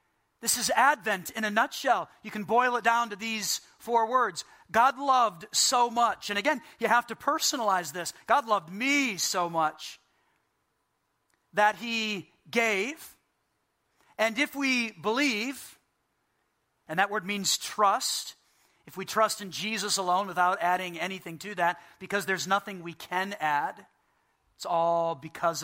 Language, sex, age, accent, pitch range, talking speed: English, male, 40-59, American, 165-225 Hz, 145 wpm